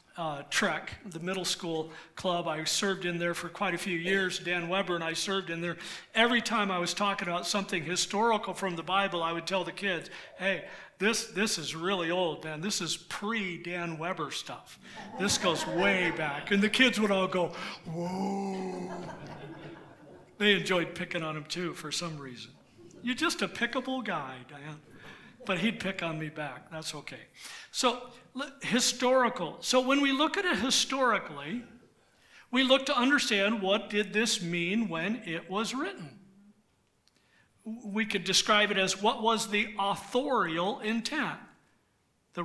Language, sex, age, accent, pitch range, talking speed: English, male, 50-69, American, 180-245 Hz, 165 wpm